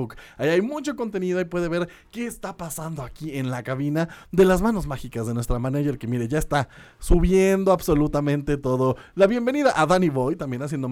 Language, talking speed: Spanish, 190 wpm